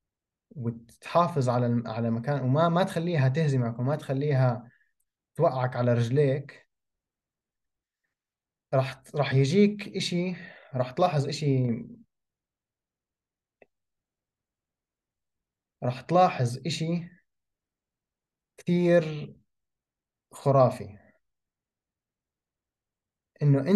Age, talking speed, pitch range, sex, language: 20-39, 70 wpm, 125-155 Hz, male, Arabic